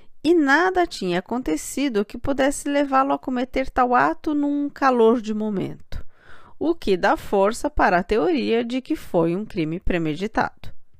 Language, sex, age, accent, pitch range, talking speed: Portuguese, female, 40-59, Brazilian, 180-255 Hz, 155 wpm